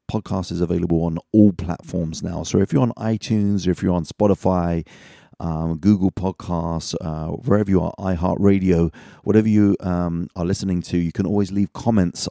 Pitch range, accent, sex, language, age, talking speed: 85-95 Hz, British, male, English, 30-49, 170 wpm